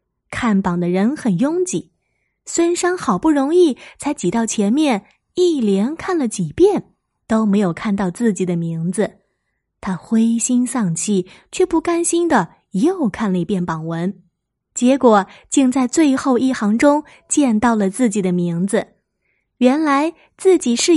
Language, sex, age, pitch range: Chinese, female, 20-39, 195-285 Hz